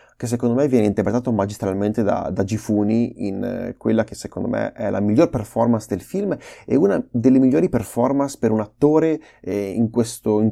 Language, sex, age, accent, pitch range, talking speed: Italian, male, 20-39, native, 105-135 Hz, 185 wpm